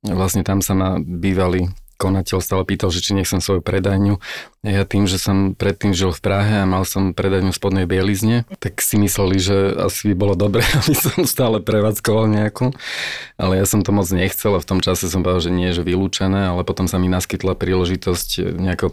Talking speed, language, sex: 205 wpm, Slovak, male